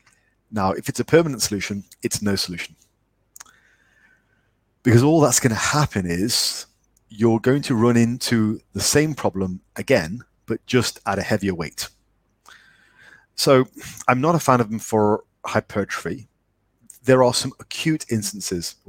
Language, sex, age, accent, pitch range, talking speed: English, male, 30-49, British, 100-125 Hz, 145 wpm